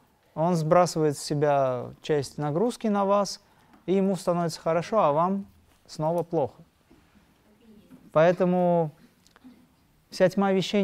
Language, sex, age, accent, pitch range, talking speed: Russian, male, 30-49, native, 145-190 Hz, 110 wpm